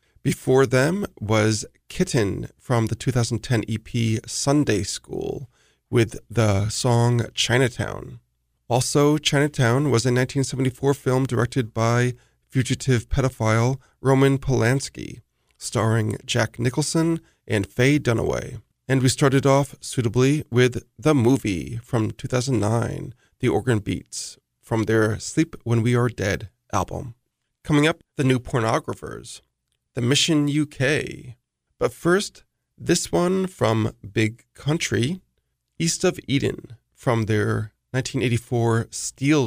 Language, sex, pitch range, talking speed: English, male, 115-140 Hz, 115 wpm